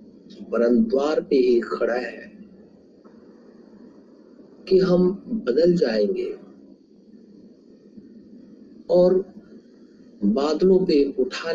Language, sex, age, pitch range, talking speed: Hindi, male, 50-69, 140-225 Hz, 70 wpm